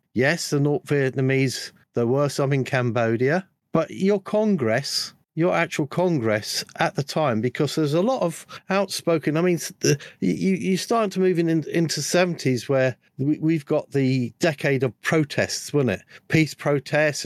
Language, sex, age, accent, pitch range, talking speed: English, male, 50-69, British, 130-165 Hz, 155 wpm